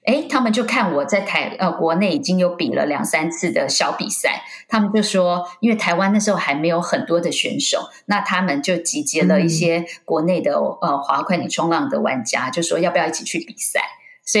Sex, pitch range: female, 170-235 Hz